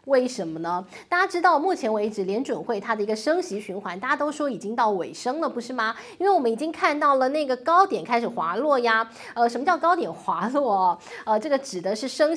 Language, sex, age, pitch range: Chinese, female, 20-39, 215-305 Hz